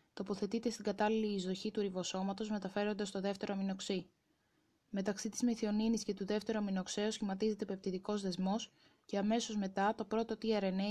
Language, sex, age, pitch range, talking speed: Greek, female, 20-39, 195-220 Hz, 145 wpm